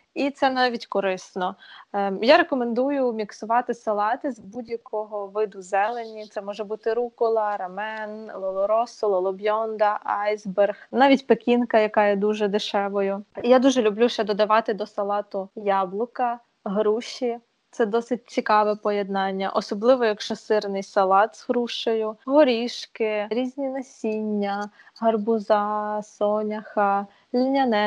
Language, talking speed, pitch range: Ukrainian, 110 wpm, 210-245 Hz